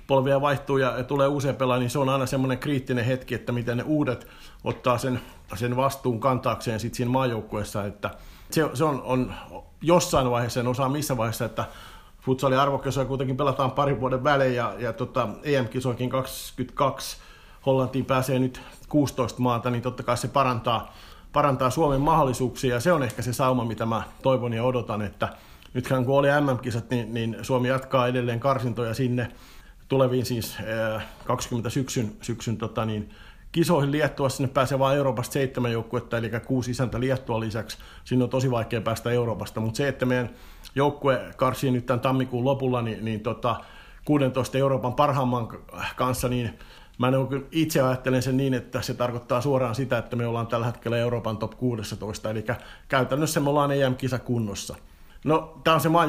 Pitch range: 120-135 Hz